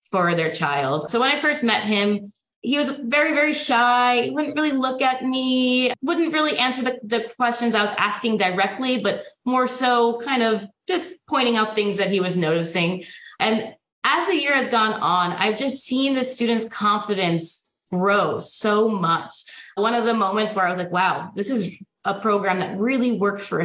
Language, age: English, 20-39